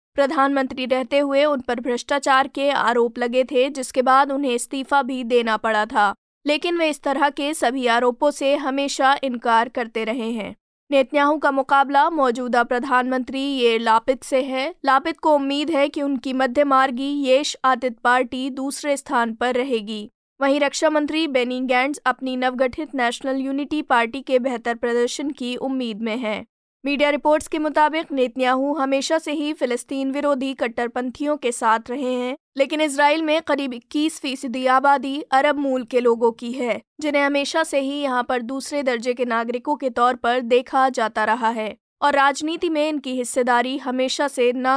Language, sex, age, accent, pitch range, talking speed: Hindi, female, 20-39, native, 245-280 Hz, 165 wpm